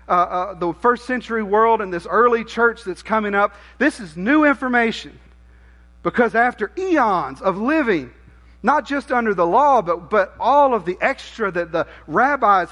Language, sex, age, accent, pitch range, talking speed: English, male, 40-59, American, 175-250 Hz, 170 wpm